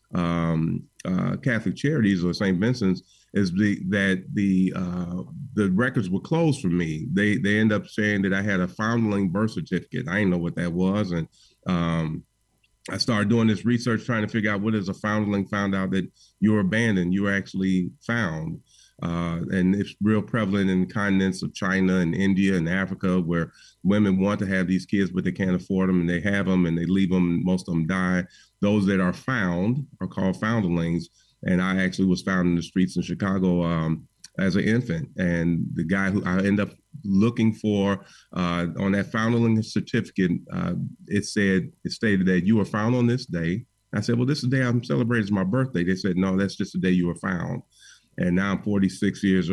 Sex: male